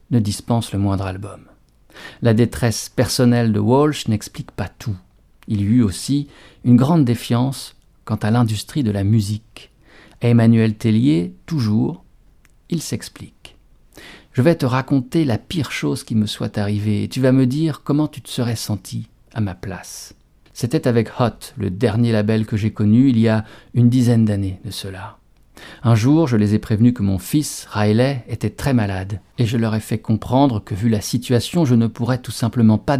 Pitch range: 105-125 Hz